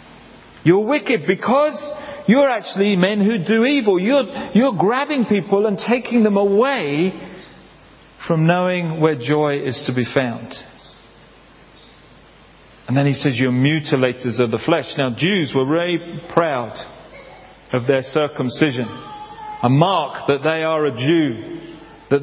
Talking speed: 135 wpm